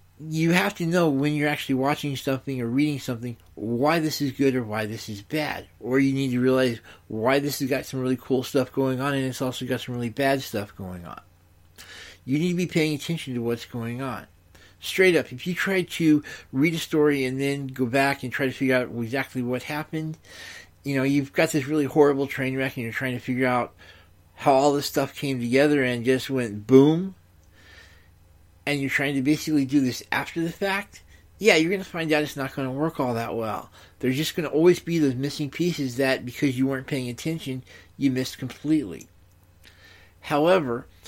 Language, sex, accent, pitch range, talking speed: English, male, American, 120-145 Hz, 215 wpm